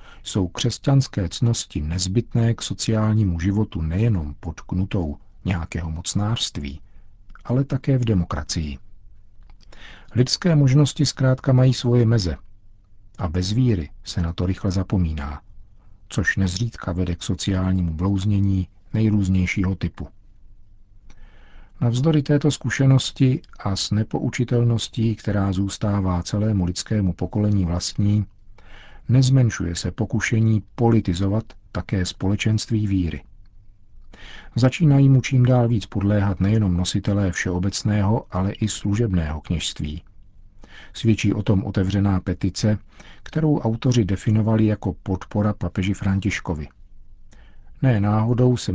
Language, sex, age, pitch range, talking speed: Czech, male, 50-69, 95-110 Hz, 105 wpm